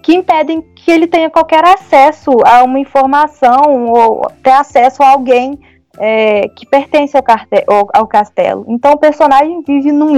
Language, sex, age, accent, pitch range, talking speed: Portuguese, female, 10-29, Brazilian, 220-300 Hz, 145 wpm